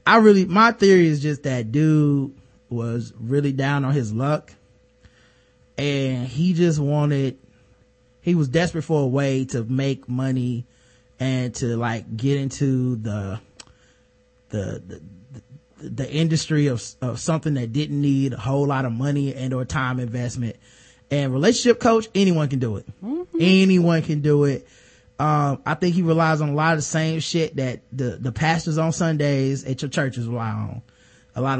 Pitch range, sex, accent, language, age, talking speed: 125-180 Hz, male, American, English, 20-39, 170 wpm